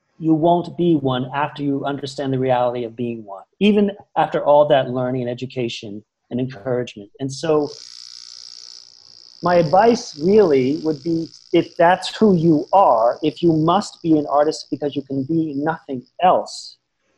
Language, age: English, 40-59